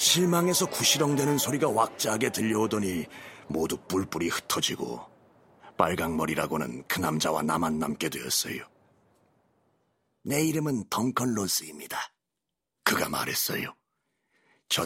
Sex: male